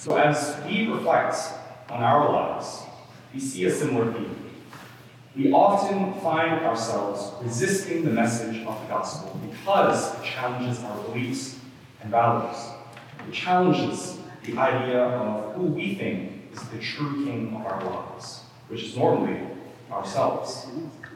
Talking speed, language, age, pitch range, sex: 135 wpm, English, 30-49, 120-160 Hz, male